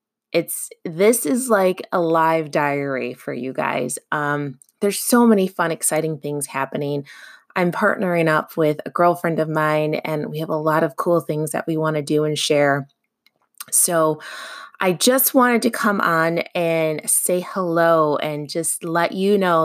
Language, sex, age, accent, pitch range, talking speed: English, female, 20-39, American, 150-175 Hz, 170 wpm